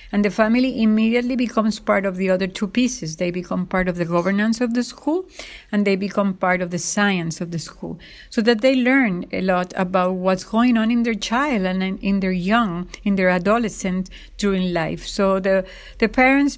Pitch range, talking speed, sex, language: 185-225 Hz, 205 wpm, female, English